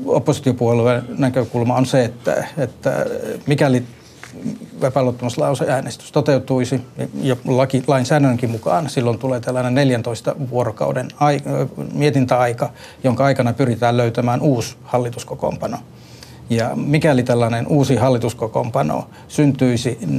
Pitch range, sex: 120-135 Hz, male